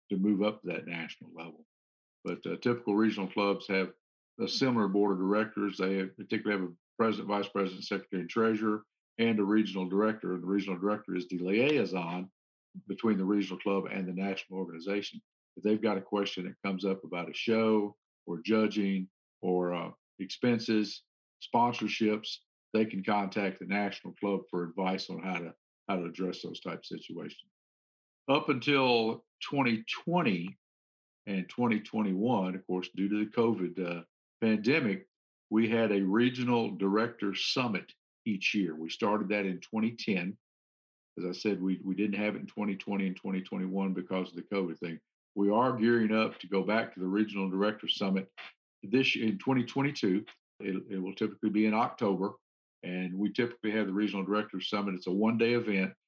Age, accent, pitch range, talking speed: 50-69, American, 95-110 Hz, 175 wpm